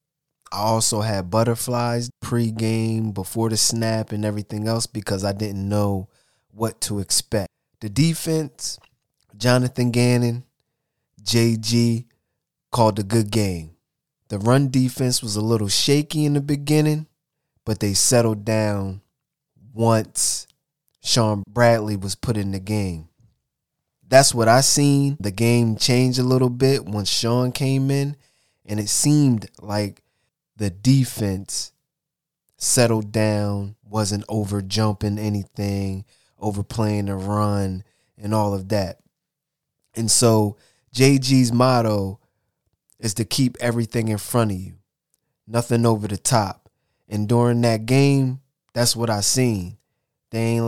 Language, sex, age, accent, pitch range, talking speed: English, male, 20-39, American, 105-130 Hz, 130 wpm